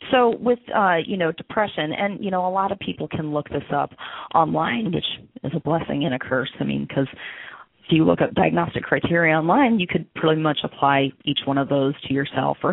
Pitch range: 150-180 Hz